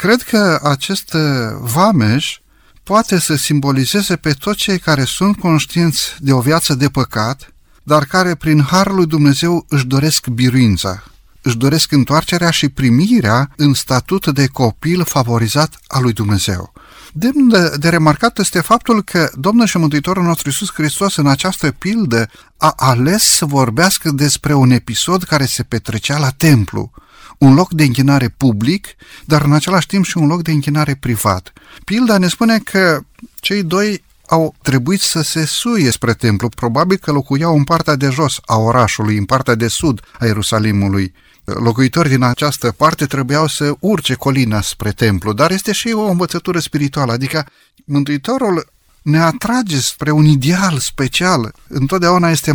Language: Romanian